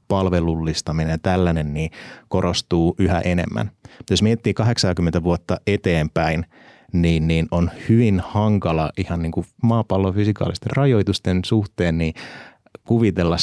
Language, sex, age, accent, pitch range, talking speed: Finnish, male, 30-49, native, 85-100 Hz, 110 wpm